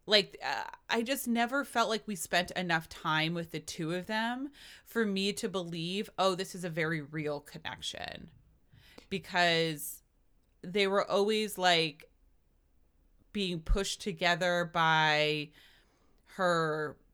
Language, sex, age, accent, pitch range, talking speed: English, female, 20-39, American, 165-205 Hz, 130 wpm